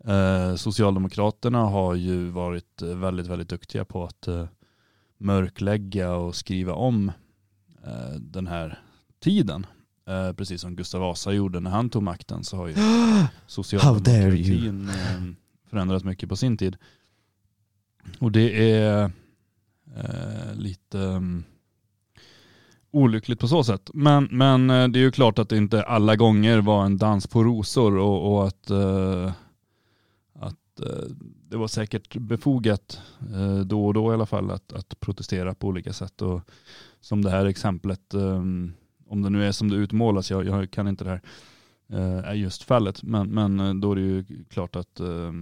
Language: Swedish